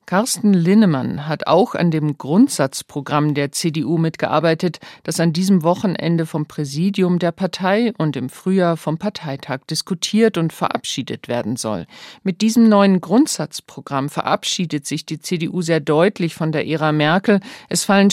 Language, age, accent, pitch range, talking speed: German, 50-69, German, 150-195 Hz, 145 wpm